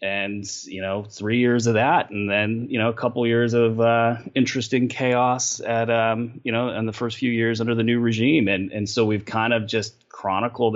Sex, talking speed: male, 215 wpm